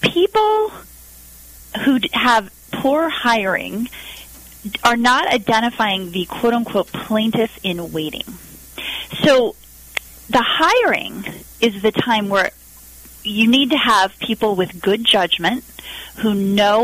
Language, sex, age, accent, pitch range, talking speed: English, female, 30-49, American, 180-235 Hz, 100 wpm